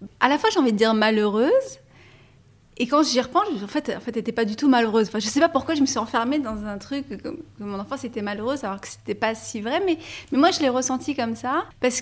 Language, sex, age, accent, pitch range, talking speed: French, female, 30-49, French, 210-265 Hz, 270 wpm